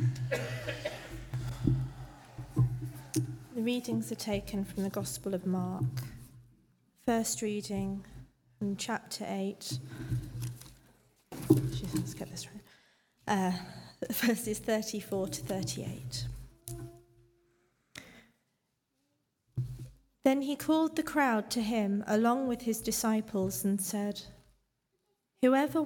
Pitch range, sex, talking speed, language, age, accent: 140-235 Hz, female, 90 wpm, English, 30-49, British